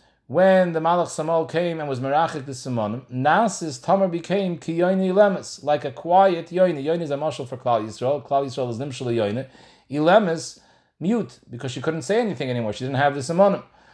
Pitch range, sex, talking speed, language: 145-185 Hz, male, 190 wpm, English